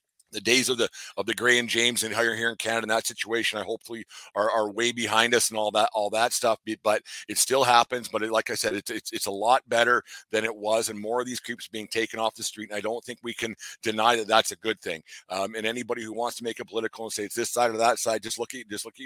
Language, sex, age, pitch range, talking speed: English, male, 50-69, 110-120 Hz, 295 wpm